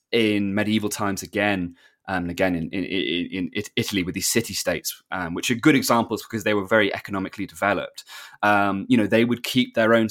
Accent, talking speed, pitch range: British, 200 wpm, 105-120 Hz